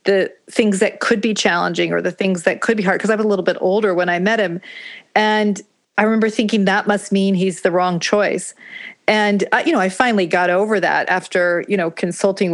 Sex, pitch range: female, 185-210 Hz